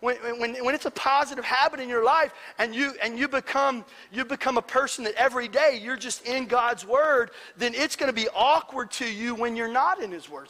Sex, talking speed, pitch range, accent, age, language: male, 230 wpm, 220-280 Hz, American, 40-59, English